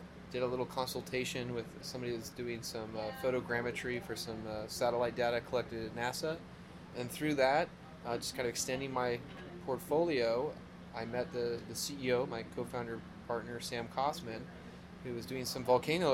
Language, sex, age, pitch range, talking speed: English, male, 20-39, 115-130 Hz, 165 wpm